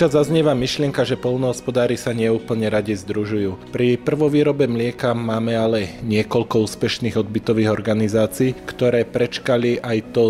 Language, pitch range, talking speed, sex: Slovak, 105-120 Hz, 130 wpm, male